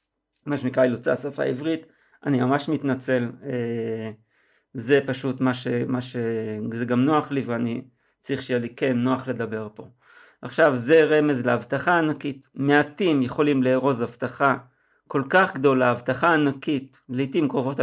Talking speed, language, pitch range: 140 wpm, Hebrew, 130-165 Hz